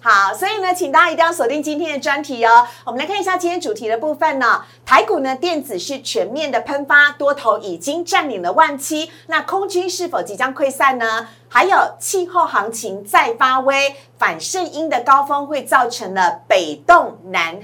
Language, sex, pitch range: Chinese, female, 240-315 Hz